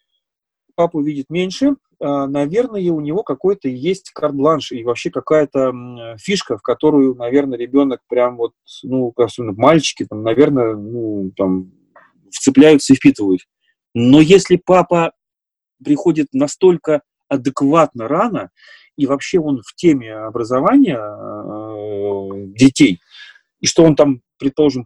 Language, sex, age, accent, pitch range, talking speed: Russian, male, 30-49, native, 125-175 Hz, 115 wpm